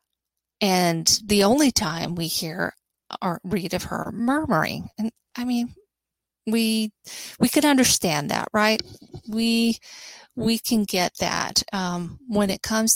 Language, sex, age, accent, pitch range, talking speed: English, female, 40-59, American, 175-220 Hz, 135 wpm